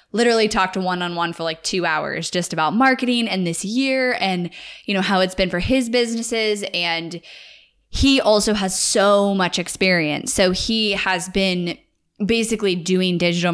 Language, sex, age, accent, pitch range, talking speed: English, female, 10-29, American, 175-215 Hz, 160 wpm